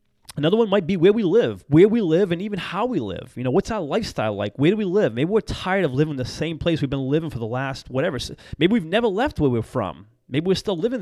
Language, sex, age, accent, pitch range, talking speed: English, male, 30-49, American, 140-185 Hz, 280 wpm